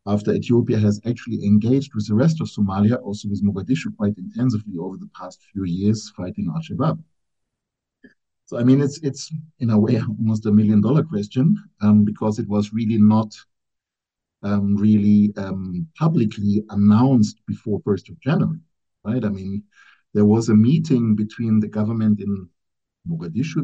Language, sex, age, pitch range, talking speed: English, male, 50-69, 100-125 Hz, 155 wpm